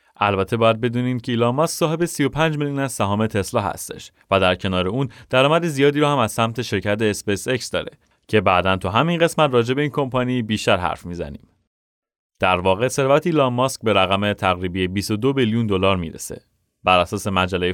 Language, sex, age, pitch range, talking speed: Persian, male, 30-49, 95-135 Hz, 185 wpm